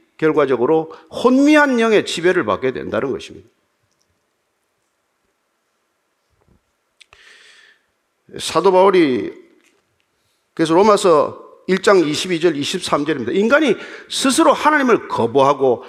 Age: 40-59